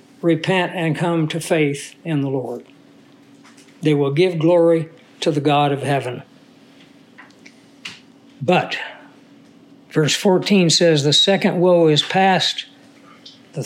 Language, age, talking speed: English, 60-79, 120 wpm